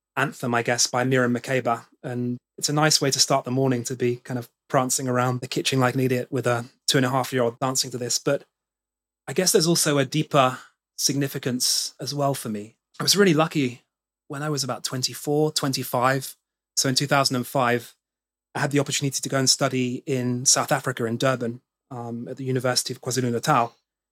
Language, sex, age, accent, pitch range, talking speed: English, male, 30-49, British, 125-145 Hz, 200 wpm